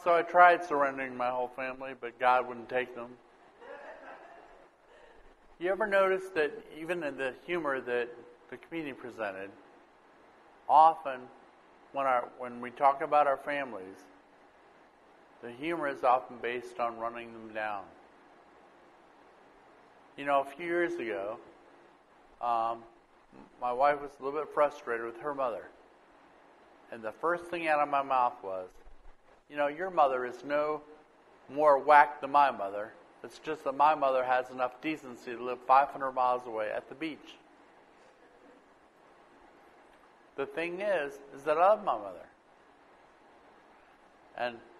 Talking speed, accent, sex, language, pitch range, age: 140 wpm, American, male, English, 125-155 Hz, 50-69